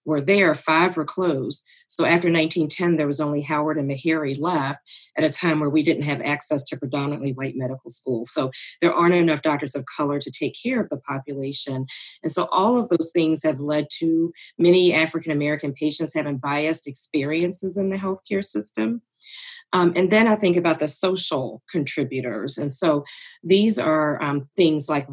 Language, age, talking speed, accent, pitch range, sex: English, 40-59, 180 wpm, American, 145-175 Hz, female